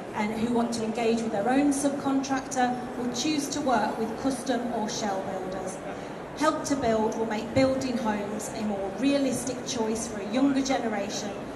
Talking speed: 170 wpm